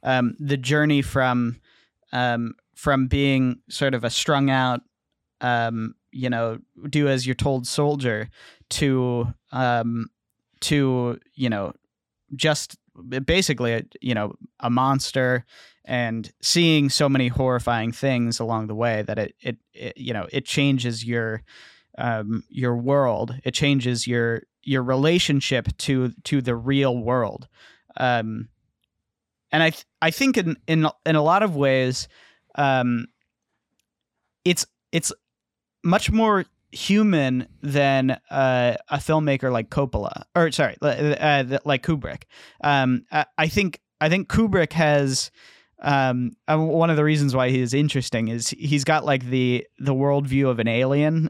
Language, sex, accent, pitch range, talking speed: English, male, American, 120-145 Hz, 135 wpm